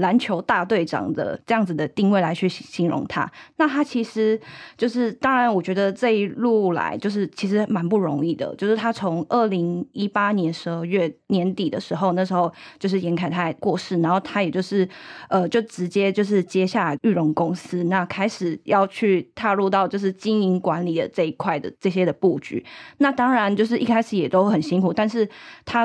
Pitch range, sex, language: 180-210 Hz, female, Chinese